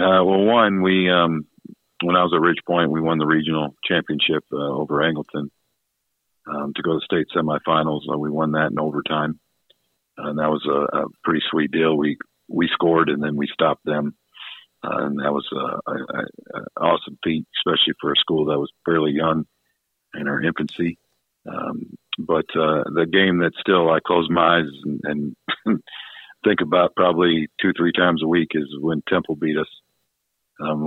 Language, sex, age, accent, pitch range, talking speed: English, male, 50-69, American, 75-85 Hz, 185 wpm